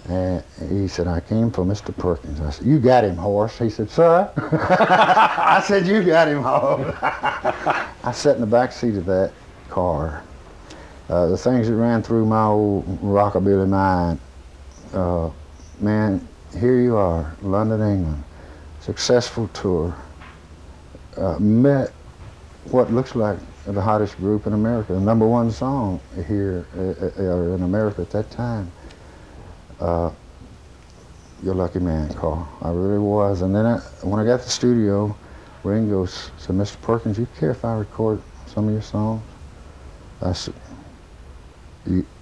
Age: 60-79